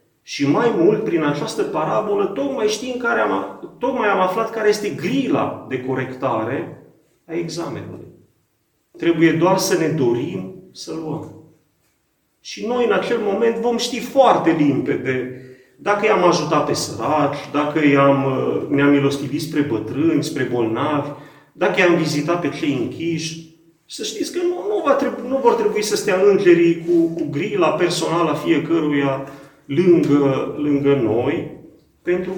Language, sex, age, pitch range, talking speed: Romanian, male, 30-49, 140-210 Hz, 140 wpm